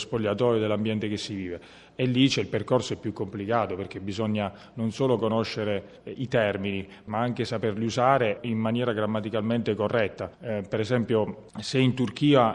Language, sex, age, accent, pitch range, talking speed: Italian, male, 30-49, native, 105-120 Hz, 165 wpm